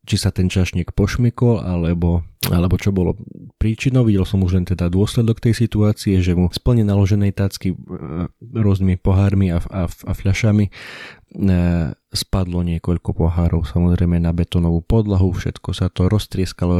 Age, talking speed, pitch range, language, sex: 20-39, 145 wpm, 90-100 Hz, Slovak, male